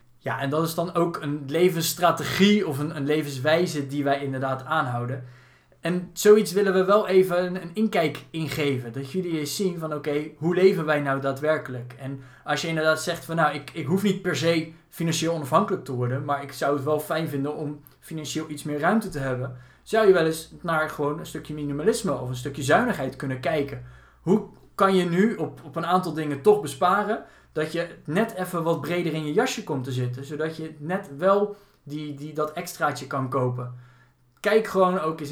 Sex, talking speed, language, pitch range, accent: male, 205 wpm, Dutch, 140-175 Hz, Dutch